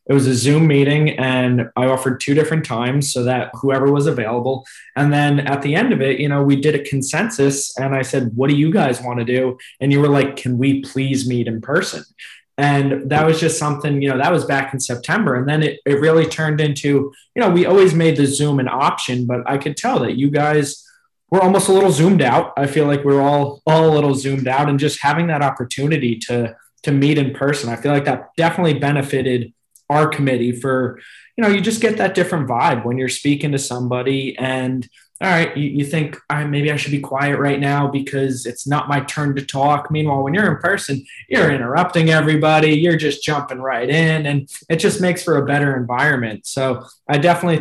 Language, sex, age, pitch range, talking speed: English, male, 20-39, 130-155 Hz, 220 wpm